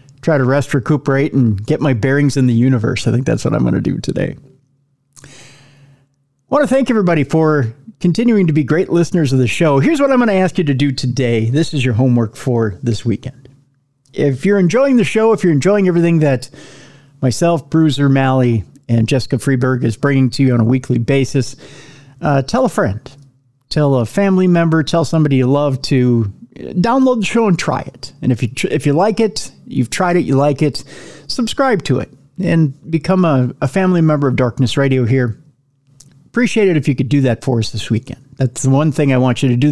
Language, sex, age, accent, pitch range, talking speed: English, male, 40-59, American, 130-170 Hz, 215 wpm